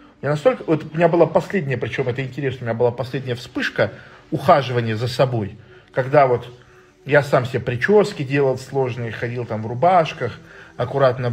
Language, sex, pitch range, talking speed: Russian, male, 120-170 Hz, 165 wpm